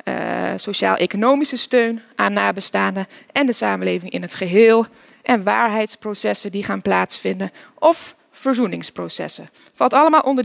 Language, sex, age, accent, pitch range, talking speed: Dutch, female, 20-39, Dutch, 205-280 Hz, 120 wpm